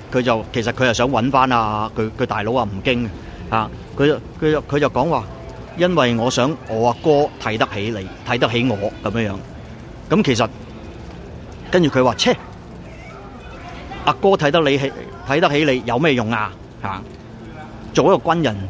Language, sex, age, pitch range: Chinese, male, 30-49, 110-140 Hz